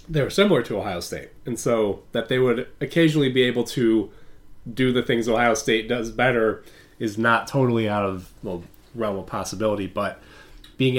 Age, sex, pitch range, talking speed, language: 30-49, male, 105-130 Hz, 180 wpm, English